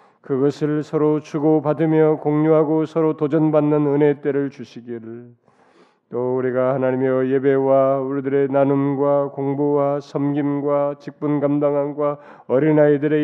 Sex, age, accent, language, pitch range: male, 30-49, native, Korean, 125-145 Hz